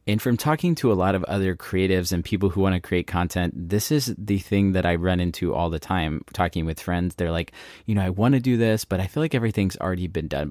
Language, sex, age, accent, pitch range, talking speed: English, male, 20-39, American, 90-110 Hz, 270 wpm